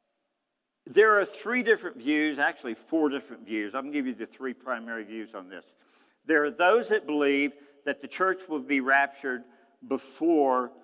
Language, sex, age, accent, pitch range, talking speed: English, male, 50-69, American, 115-140 Hz, 175 wpm